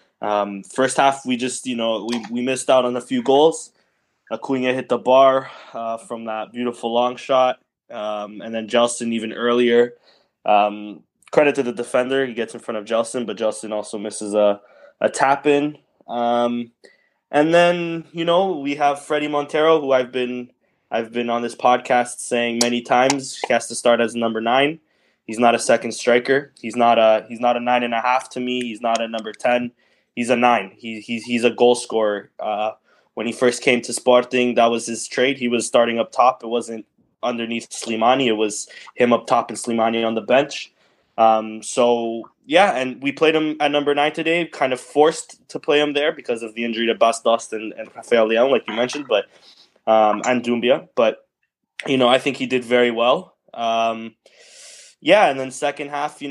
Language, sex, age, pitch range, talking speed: English, male, 20-39, 115-130 Hz, 200 wpm